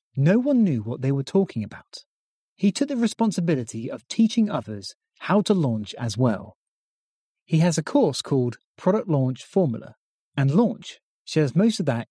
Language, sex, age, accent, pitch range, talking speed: English, male, 30-49, British, 130-195 Hz, 170 wpm